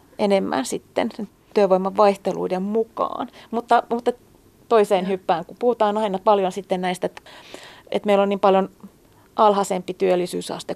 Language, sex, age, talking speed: Finnish, female, 30-49, 125 wpm